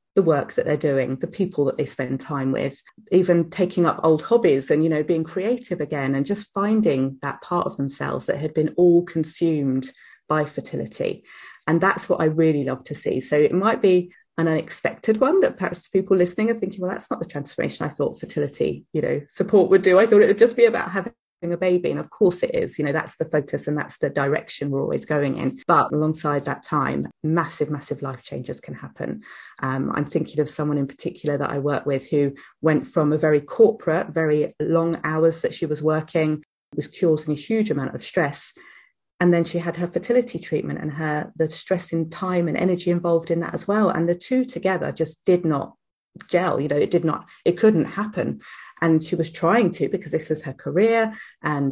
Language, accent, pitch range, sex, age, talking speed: English, British, 150-190 Hz, female, 30-49, 215 wpm